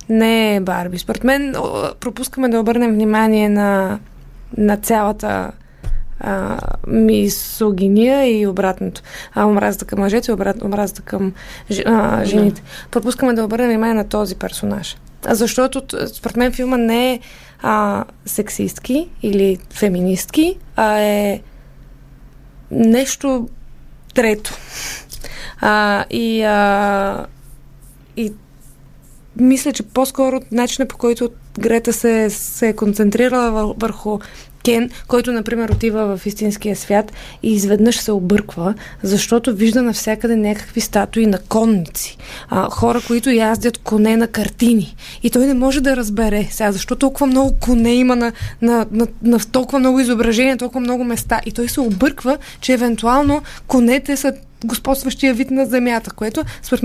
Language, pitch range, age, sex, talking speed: Bulgarian, 205-245 Hz, 20-39, female, 130 wpm